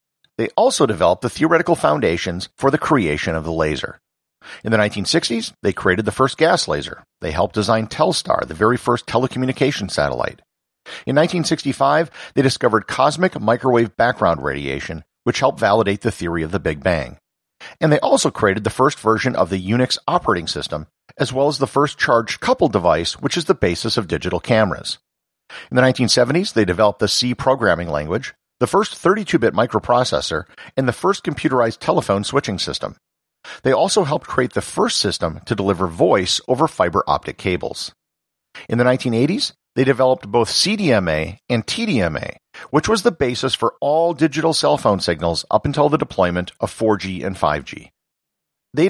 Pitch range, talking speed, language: 95-145 Hz, 165 wpm, English